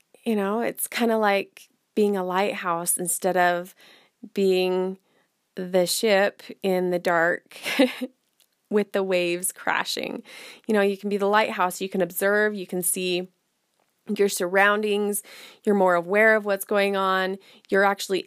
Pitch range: 180-215 Hz